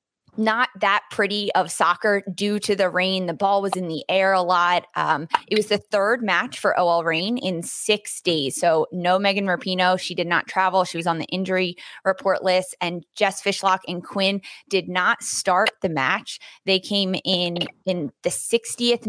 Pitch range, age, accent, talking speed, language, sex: 180-215 Hz, 20-39, American, 190 wpm, English, female